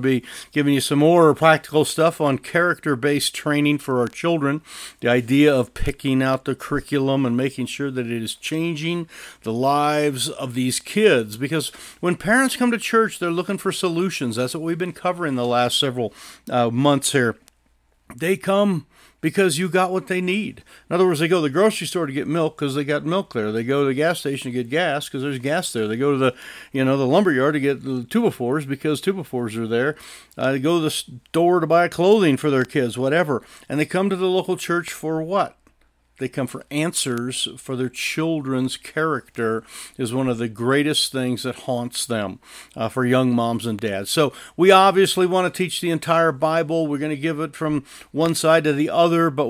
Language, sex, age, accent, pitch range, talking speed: English, male, 50-69, American, 130-170 Hz, 210 wpm